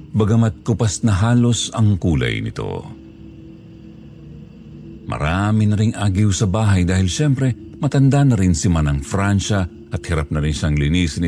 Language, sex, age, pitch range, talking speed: Filipino, male, 50-69, 75-105 Hz, 145 wpm